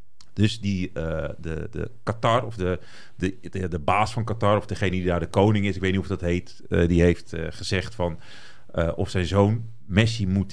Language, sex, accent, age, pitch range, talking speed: Dutch, male, Dutch, 40-59, 95-115 Hz, 220 wpm